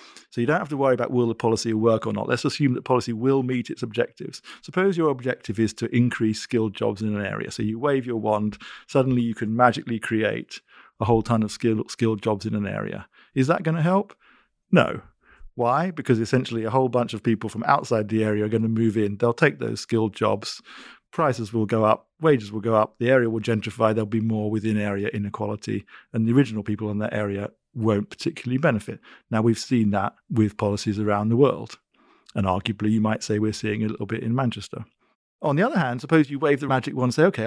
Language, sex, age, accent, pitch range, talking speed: English, male, 50-69, British, 110-130 Hz, 225 wpm